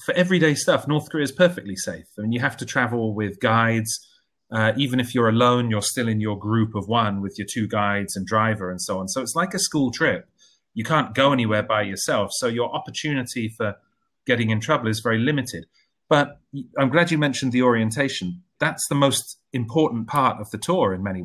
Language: English